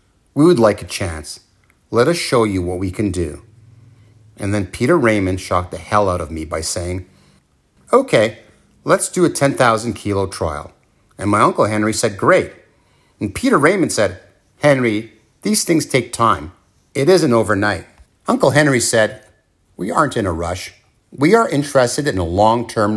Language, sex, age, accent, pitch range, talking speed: English, male, 50-69, American, 100-160 Hz, 165 wpm